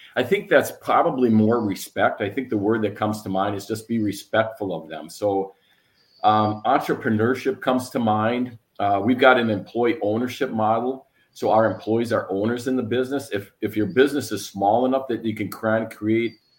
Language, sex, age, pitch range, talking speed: English, male, 40-59, 100-125 Hz, 190 wpm